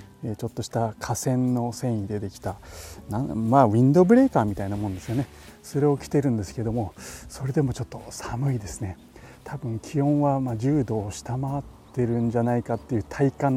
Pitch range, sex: 105-130 Hz, male